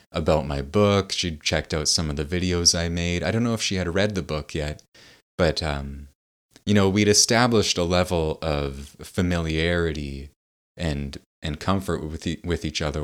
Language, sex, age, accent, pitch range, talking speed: English, male, 30-49, American, 75-90 Hz, 180 wpm